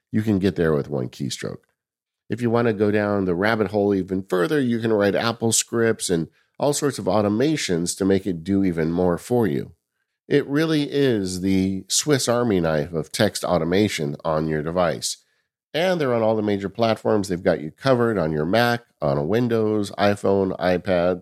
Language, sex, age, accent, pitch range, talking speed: English, male, 50-69, American, 90-120 Hz, 190 wpm